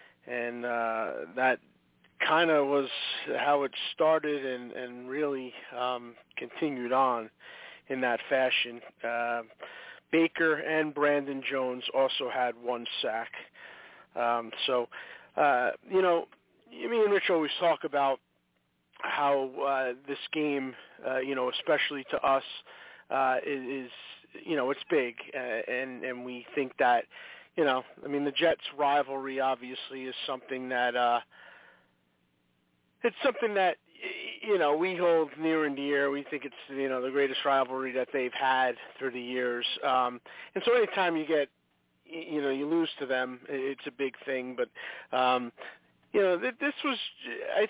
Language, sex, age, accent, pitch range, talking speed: English, male, 40-59, American, 125-160 Hz, 150 wpm